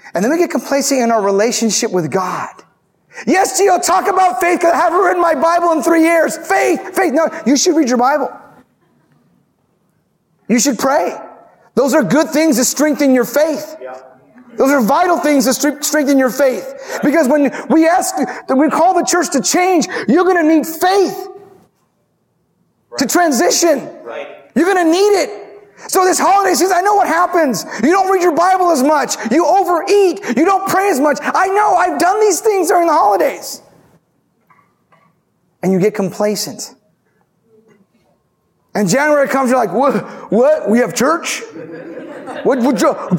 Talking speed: 170 wpm